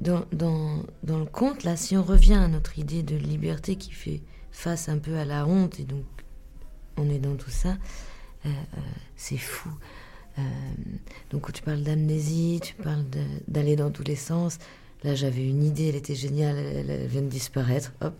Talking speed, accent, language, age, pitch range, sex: 190 wpm, French, French, 40-59, 140-170 Hz, female